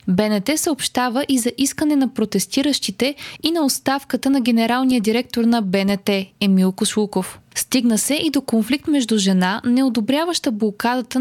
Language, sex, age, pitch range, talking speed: Bulgarian, female, 20-39, 210-265 Hz, 145 wpm